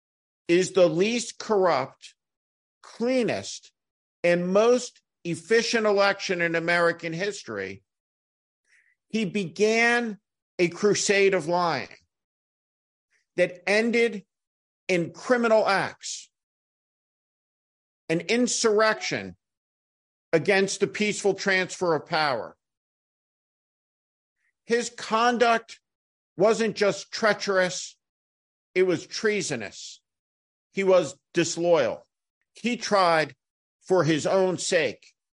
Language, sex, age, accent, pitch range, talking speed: English, male, 50-69, American, 130-205 Hz, 80 wpm